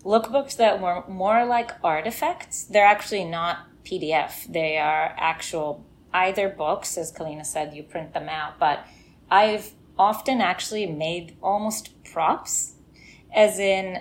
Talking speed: 135 wpm